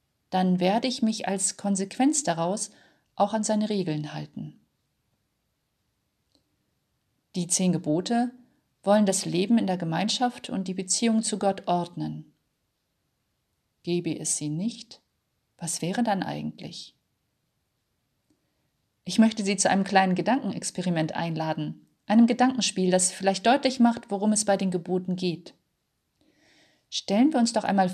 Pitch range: 170-230 Hz